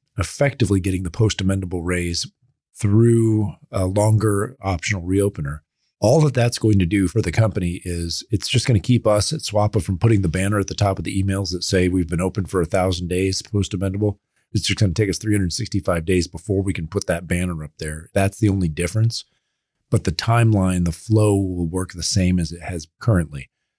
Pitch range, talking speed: 85-105 Hz, 205 wpm